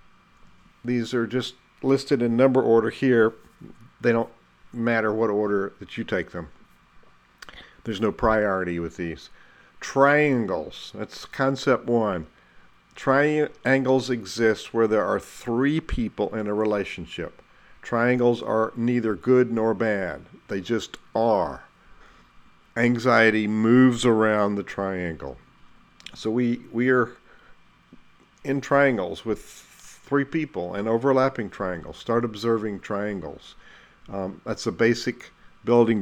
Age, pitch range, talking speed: 50-69, 105-125 Hz, 115 wpm